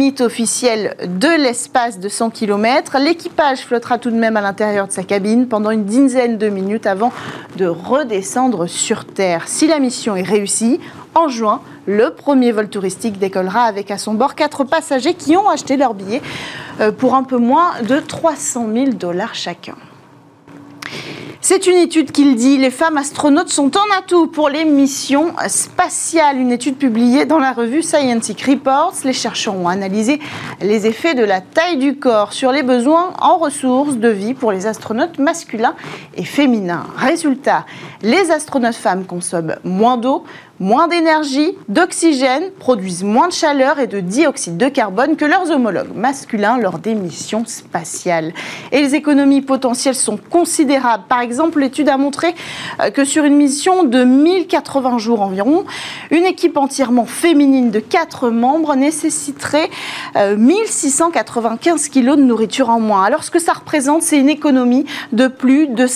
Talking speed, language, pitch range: 160 wpm, French, 225-305 Hz